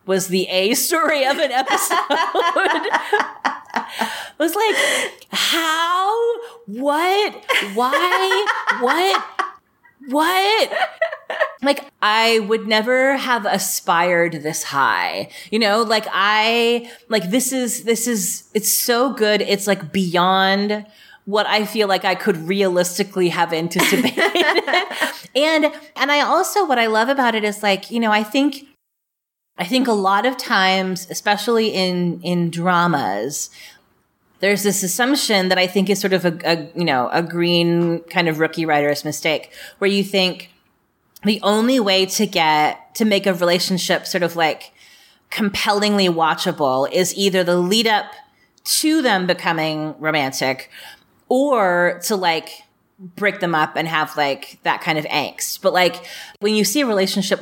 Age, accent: 30-49, American